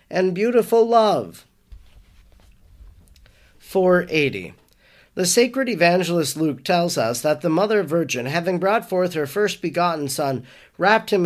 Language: English